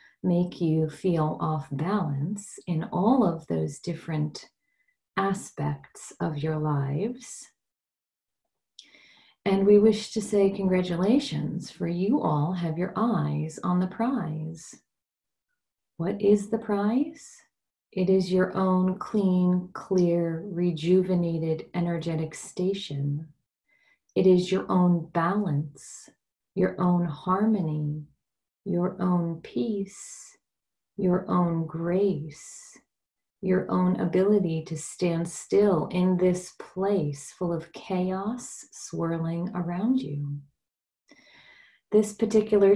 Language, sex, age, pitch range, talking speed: English, female, 30-49, 165-195 Hz, 100 wpm